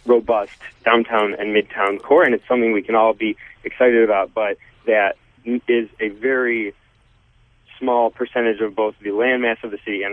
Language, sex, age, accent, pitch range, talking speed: English, male, 30-49, American, 110-125 Hz, 170 wpm